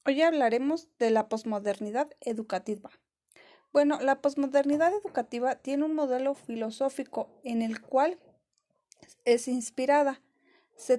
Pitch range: 225-290 Hz